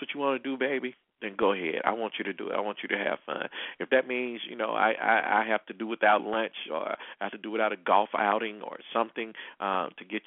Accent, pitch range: American, 105-125 Hz